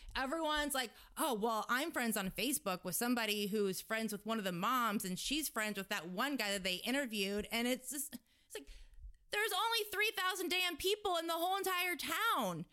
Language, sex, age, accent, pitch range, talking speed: English, female, 20-39, American, 225-335 Hz, 200 wpm